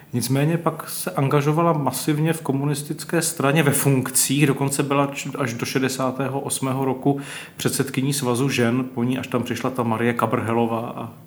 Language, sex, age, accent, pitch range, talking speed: Czech, male, 40-59, native, 110-130 Hz, 145 wpm